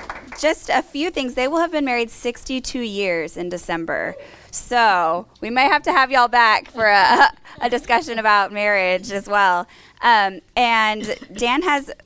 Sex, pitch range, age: female, 180-225 Hz, 20-39